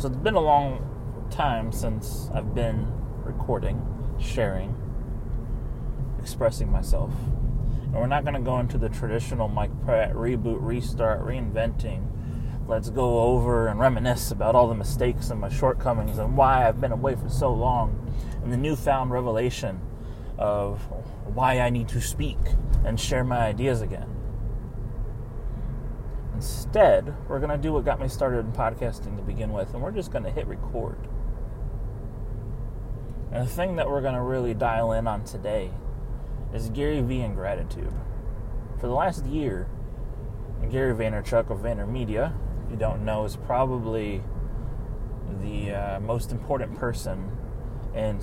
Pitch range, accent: 110-125 Hz, American